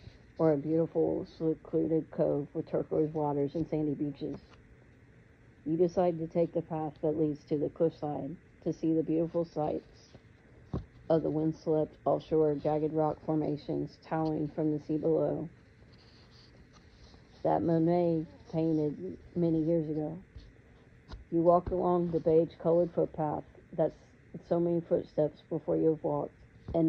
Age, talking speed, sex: 50-69, 135 wpm, female